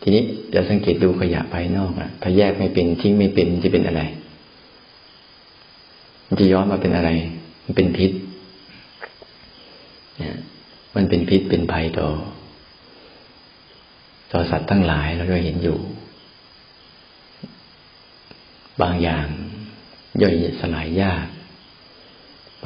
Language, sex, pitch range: Thai, male, 85-100 Hz